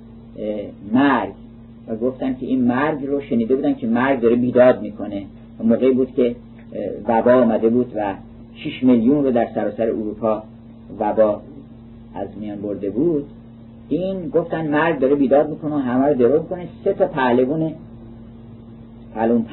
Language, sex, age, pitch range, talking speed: Persian, male, 50-69, 115-145 Hz, 155 wpm